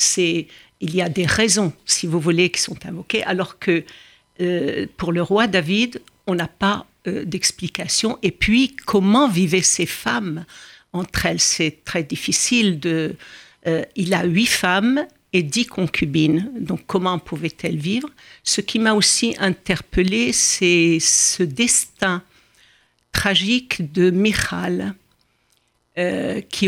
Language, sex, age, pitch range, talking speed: French, female, 60-79, 170-200 Hz, 135 wpm